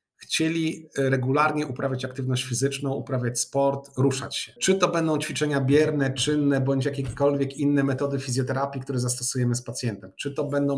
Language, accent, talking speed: Polish, native, 150 wpm